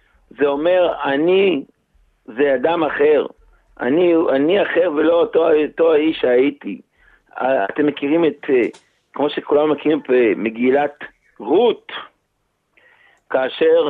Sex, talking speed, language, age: male, 105 wpm, Hebrew, 50-69